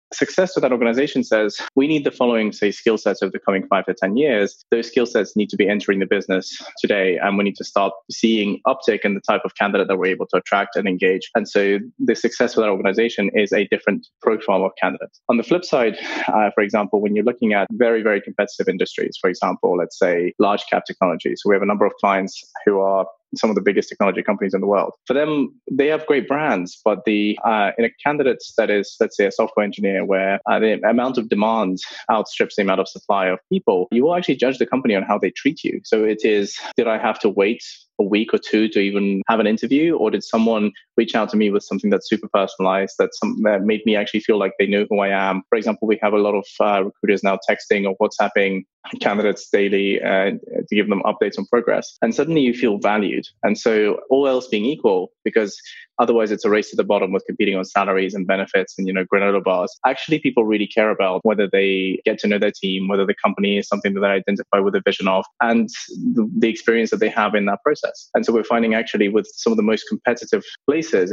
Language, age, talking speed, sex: English, 20-39, 240 wpm, male